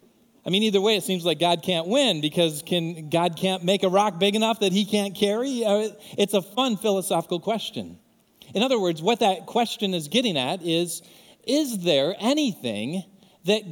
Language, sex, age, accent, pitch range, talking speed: English, male, 40-59, American, 160-210 Hz, 185 wpm